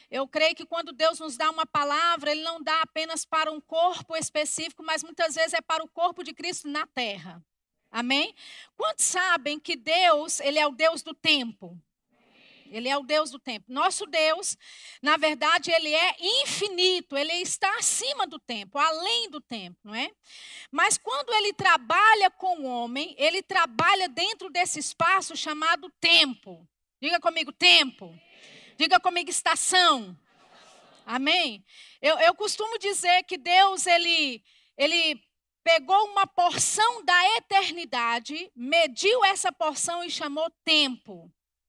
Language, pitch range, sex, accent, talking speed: Portuguese, 295-365 Hz, female, Brazilian, 150 wpm